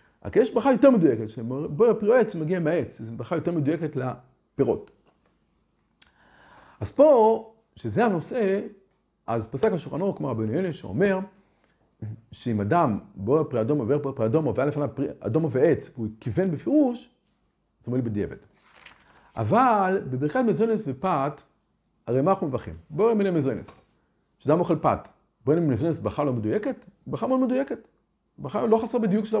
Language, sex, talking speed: Hebrew, male, 80 wpm